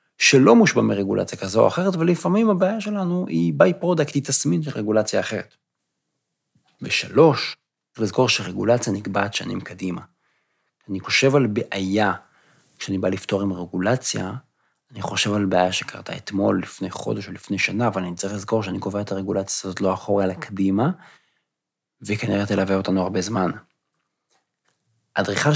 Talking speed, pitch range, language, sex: 145 wpm, 100-140 Hz, Hebrew, male